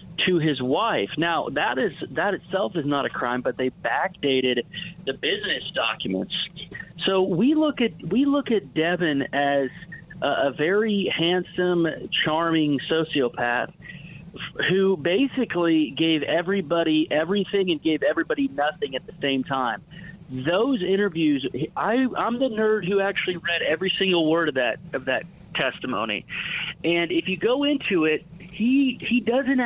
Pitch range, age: 155-195 Hz, 30-49